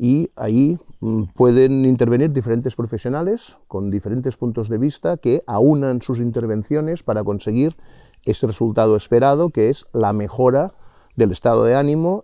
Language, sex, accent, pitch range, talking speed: Spanish, male, Spanish, 110-150 Hz, 135 wpm